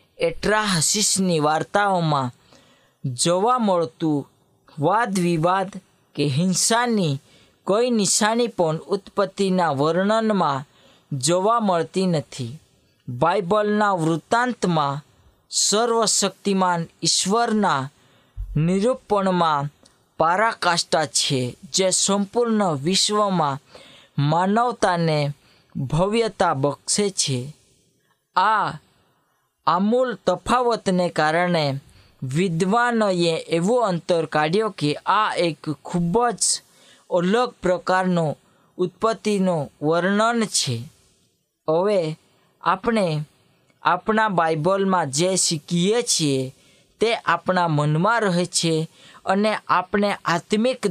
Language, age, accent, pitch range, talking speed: Hindi, 20-39, native, 150-205 Hz, 75 wpm